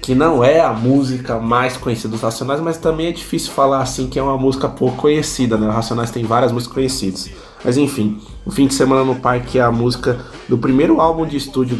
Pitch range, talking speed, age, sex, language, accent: 115-135 Hz, 225 wpm, 20-39, male, Portuguese, Brazilian